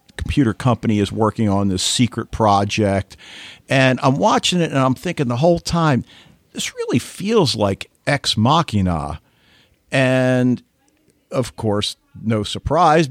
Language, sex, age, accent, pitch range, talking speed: English, male, 50-69, American, 110-135 Hz, 135 wpm